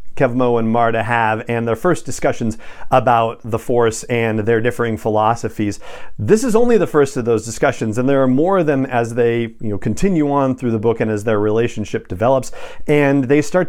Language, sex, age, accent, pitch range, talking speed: English, male, 40-59, American, 115-145 Hz, 195 wpm